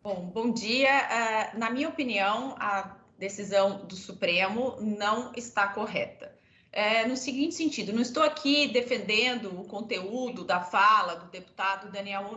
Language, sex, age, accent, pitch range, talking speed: Portuguese, female, 30-49, Brazilian, 210-290 Hz, 135 wpm